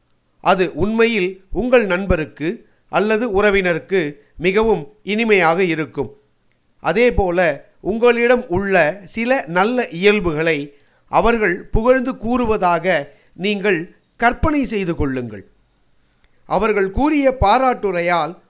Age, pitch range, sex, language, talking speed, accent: 50-69, 175-230 Hz, male, Tamil, 85 wpm, native